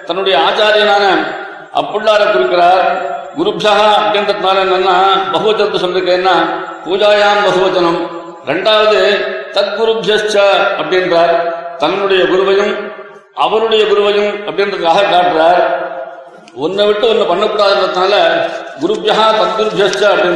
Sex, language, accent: male, Tamil, native